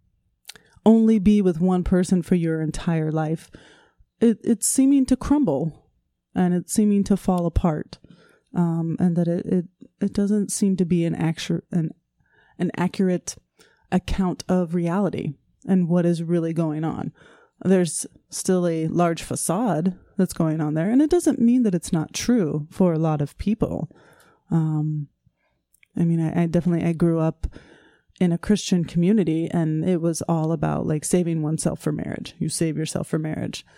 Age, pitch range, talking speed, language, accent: 30-49, 165-195 Hz, 160 wpm, English, American